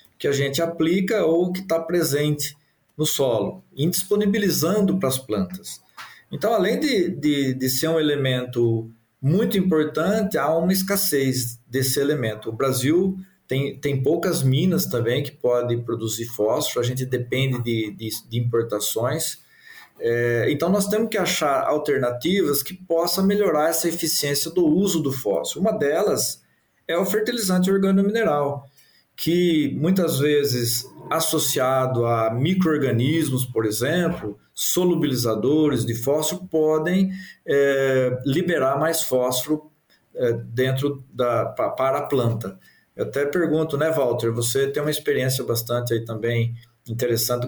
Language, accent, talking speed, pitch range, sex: Portuguese, Brazilian, 135 wpm, 120-170 Hz, male